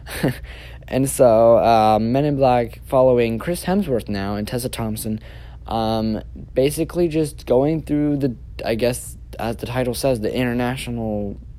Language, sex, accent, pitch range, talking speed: English, male, American, 110-135 Hz, 140 wpm